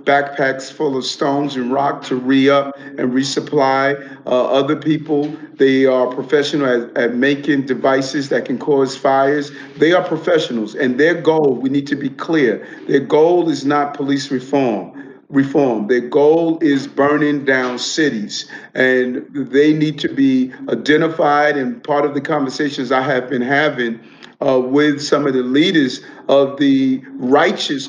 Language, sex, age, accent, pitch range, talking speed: English, male, 40-59, American, 135-155 Hz, 155 wpm